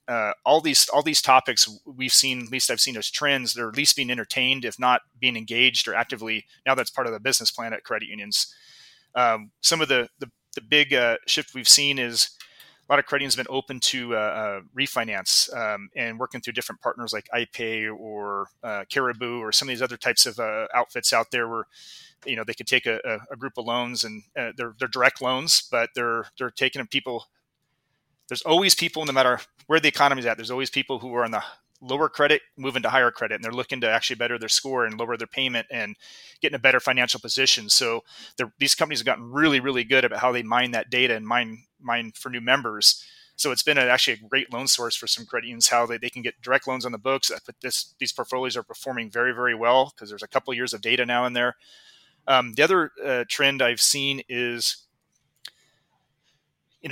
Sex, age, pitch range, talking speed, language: male, 30-49, 115-135 Hz, 230 wpm, English